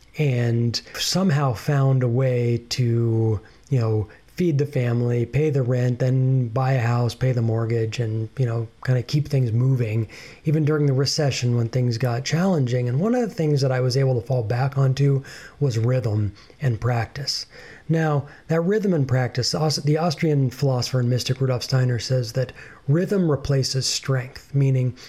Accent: American